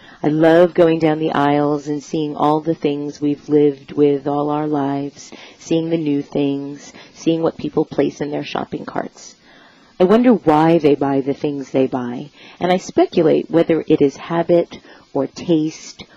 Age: 40-59